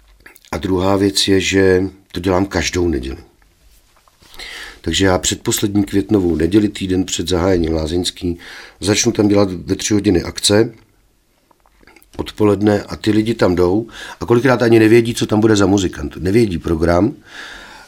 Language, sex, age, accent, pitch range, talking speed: Czech, male, 50-69, native, 85-105 Hz, 140 wpm